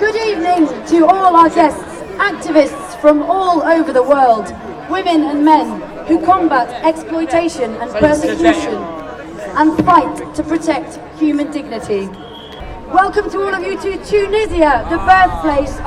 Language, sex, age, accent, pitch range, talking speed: German, female, 30-49, British, 300-360 Hz, 130 wpm